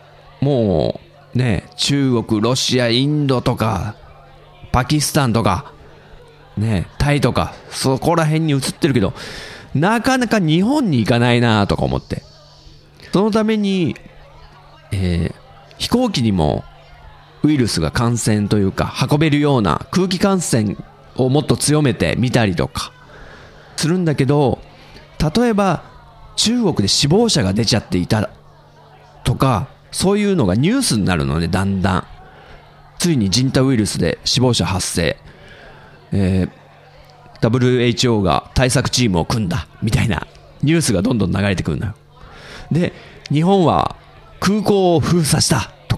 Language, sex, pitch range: Japanese, male, 110-175 Hz